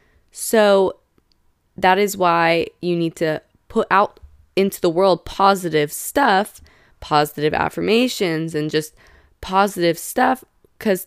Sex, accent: female, American